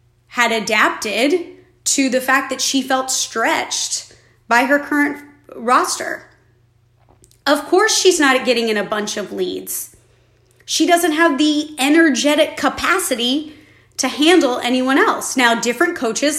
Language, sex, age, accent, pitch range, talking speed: English, female, 30-49, American, 215-275 Hz, 130 wpm